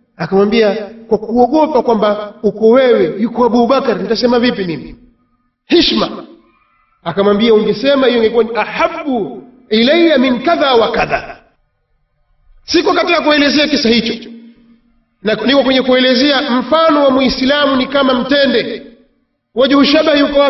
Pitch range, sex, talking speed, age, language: 235-295 Hz, male, 120 wpm, 40-59, Swahili